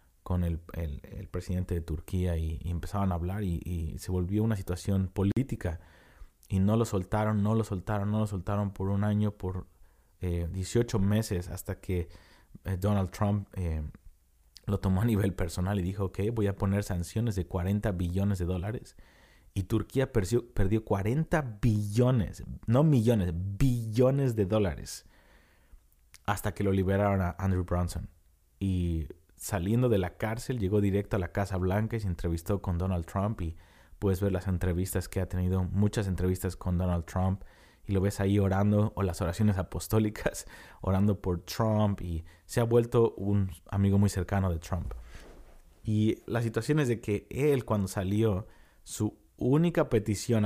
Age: 30-49